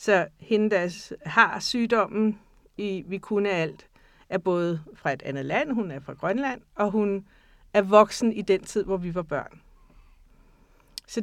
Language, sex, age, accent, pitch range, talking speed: Danish, female, 60-79, native, 185-225 Hz, 165 wpm